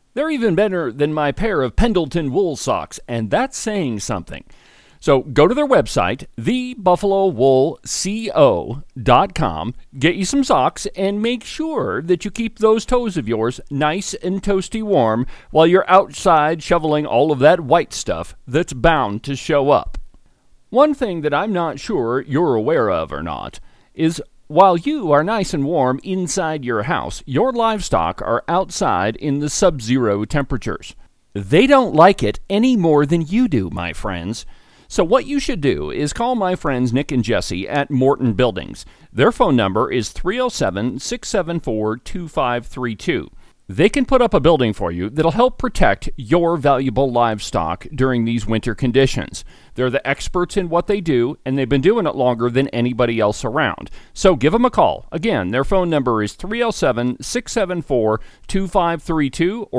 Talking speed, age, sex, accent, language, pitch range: 160 wpm, 40-59, male, American, English, 125-195 Hz